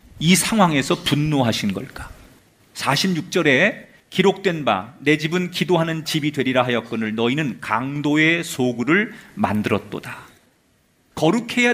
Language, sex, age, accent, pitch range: Korean, male, 40-59, native, 145-200 Hz